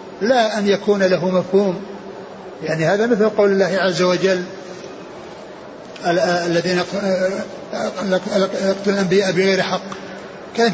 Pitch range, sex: 180-205 Hz, male